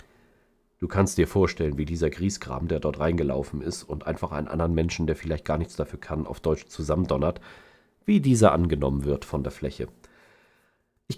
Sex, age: male, 40-59